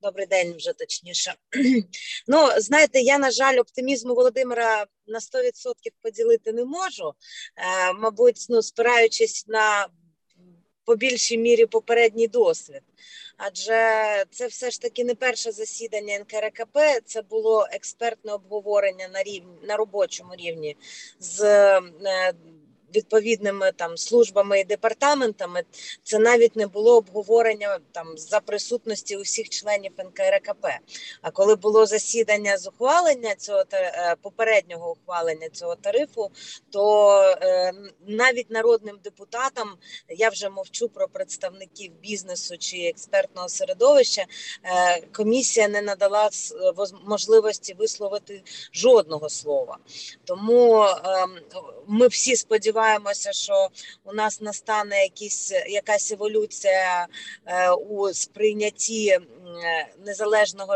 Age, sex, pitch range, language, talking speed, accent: 20-39, female, 195-260 Hz, Ukrainian, 110 wpm, native